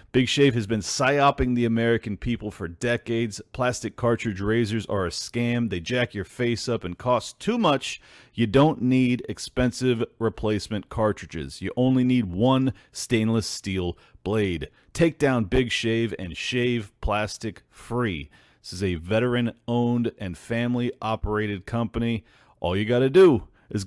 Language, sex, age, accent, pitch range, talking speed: English, male, 40-59, American, 105-130 Hz, 155 wpm